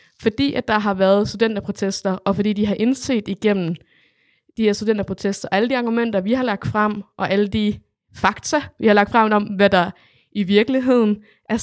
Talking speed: 190 wpm